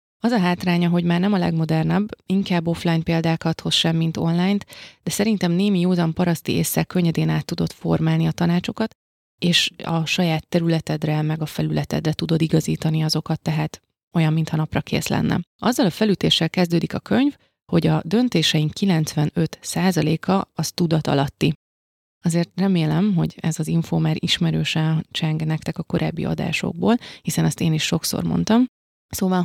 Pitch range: 160-180 Hz